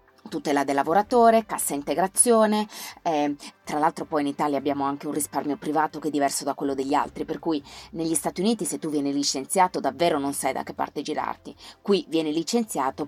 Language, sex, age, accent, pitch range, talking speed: Italian, female, 30-49, native, 150-190 Hz, 195 wpm